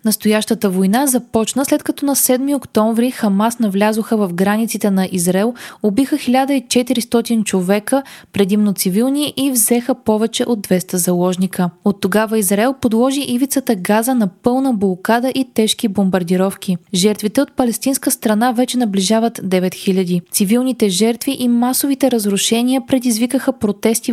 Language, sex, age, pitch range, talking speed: Bulgarian, female, 20-39, 200-255 Hz, 125 wpm